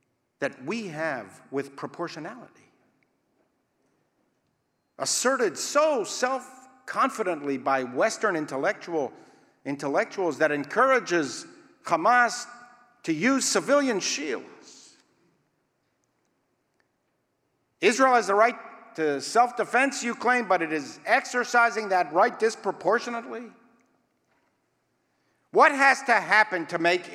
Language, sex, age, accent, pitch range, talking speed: English, male, 50-69, American, 210-270 Hz, 85 wpm